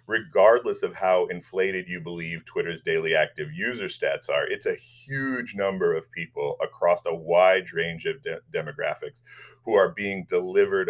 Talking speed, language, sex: 160 wpm, English, male